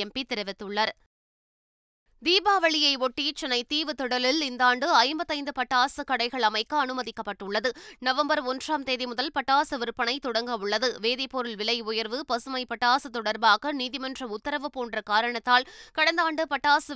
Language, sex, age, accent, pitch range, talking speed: Tamil, female, 20-39, native, 235-280 Hz, 115 wpm